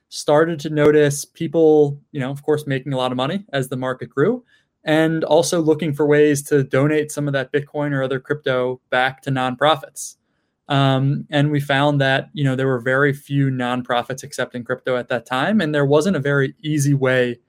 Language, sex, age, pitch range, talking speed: English, male, 20-39, 135-155 Hz, 200 wpm